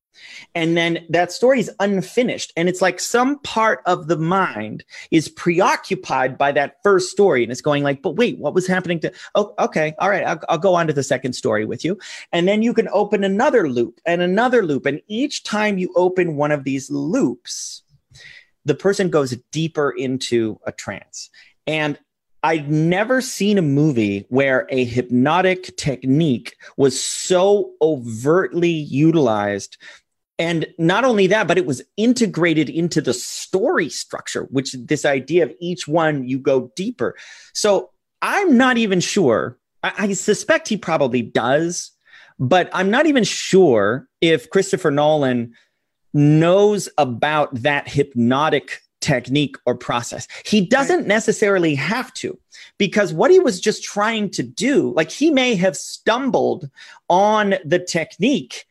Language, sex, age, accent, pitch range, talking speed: English, male, 30-49, American, 145-205 Hz, 155 wpm